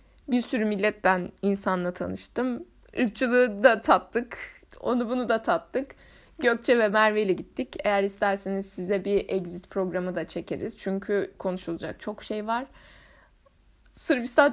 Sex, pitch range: female, 200-270 Hz